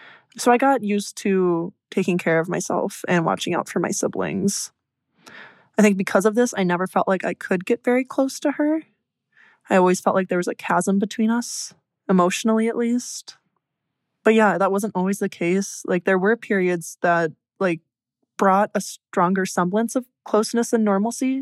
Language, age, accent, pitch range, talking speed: English, 20-39, American, 180-210 Hz, 180 wpm